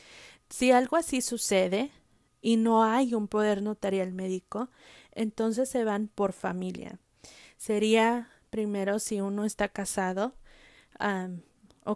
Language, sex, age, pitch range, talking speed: English, female, 20-39, 190-220 Hz, 115 wpm